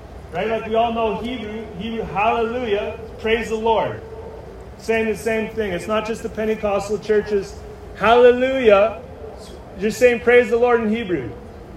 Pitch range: 215-235 Hz